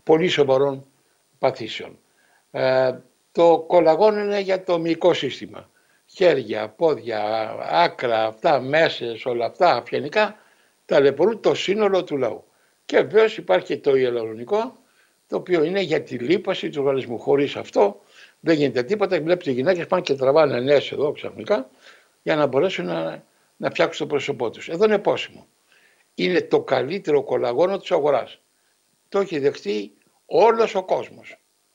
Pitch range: 140-210 Hz